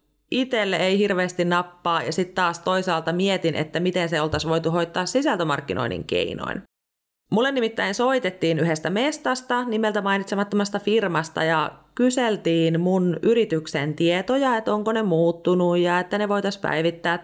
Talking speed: 135 wpm